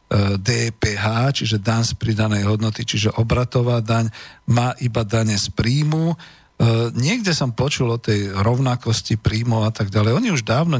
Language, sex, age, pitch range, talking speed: Slovak, male, 50-69, 110-135 Hz, 150 wpm